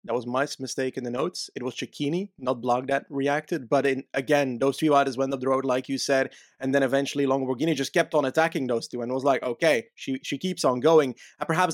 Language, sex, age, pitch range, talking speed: English, male, 20-39, 130-165 Hz, 245 wpm